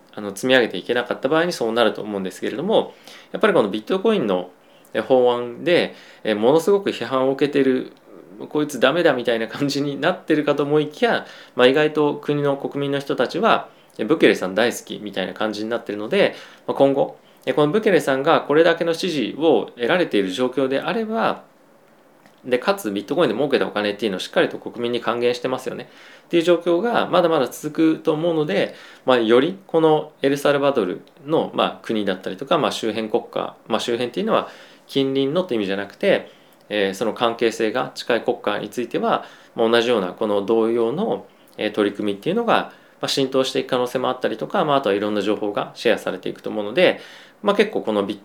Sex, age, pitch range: male, 20-39, 110-155 Hz